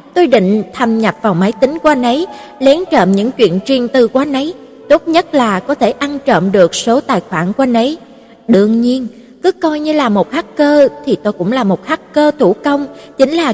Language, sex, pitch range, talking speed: Vietnamese, female, 215-285 Hz, 225 wpm